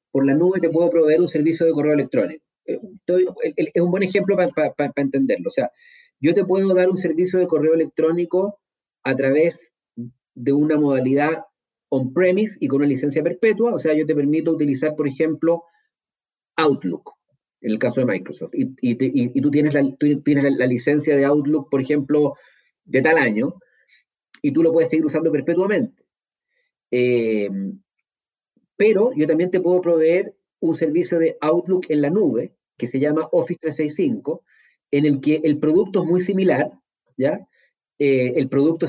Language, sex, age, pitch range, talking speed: Spanish, male, 30-49, 145-180 Hz, 175 wpm